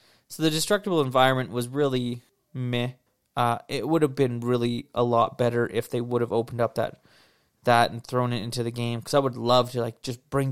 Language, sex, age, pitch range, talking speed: English, male, 20-39, 125-150 Hz, 215 wpm